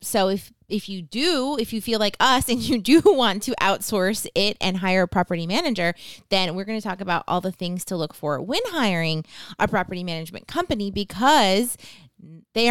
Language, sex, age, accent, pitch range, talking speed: English, female, 20-39, American, 175-225 Hz, 200 wpm